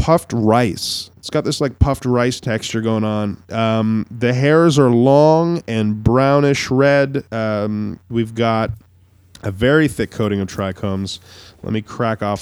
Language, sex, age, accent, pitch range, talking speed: English, male, 20-39, American, 100-140 Hz, 155 wpm